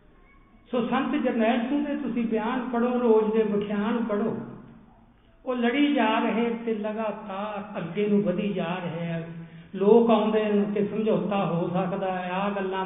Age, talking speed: 50-69, 145 wpm